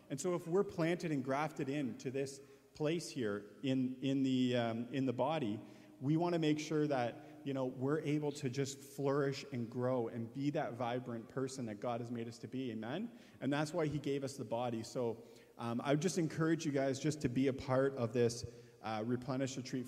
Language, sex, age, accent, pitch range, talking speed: English, male, 40-59, American, 115-140 Hz, 220 wpm